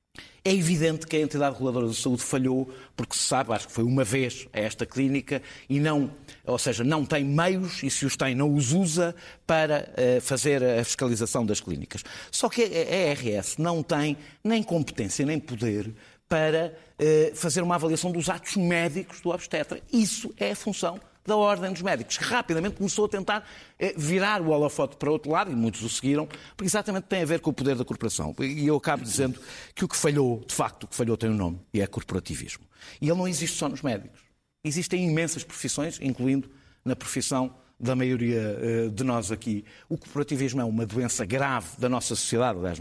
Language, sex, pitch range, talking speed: Portuguese, male, 125-170 Hz, 195 wpm